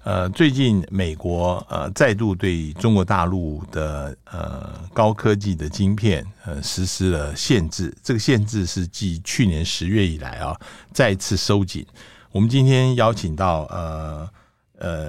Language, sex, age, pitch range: Chinese, male, 60-79, 85-110 Hz